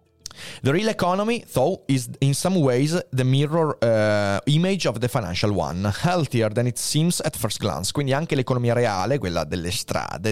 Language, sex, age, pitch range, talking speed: Italian, male, 30-49, 105-140 Hz, 175 wpm